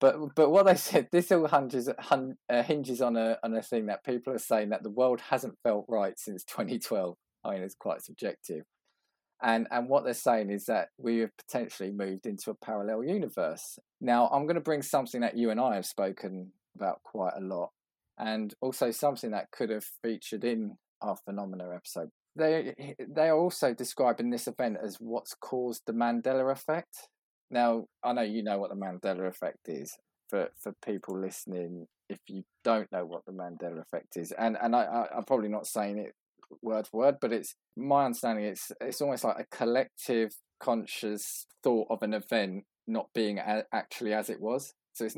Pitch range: 100-125 Hz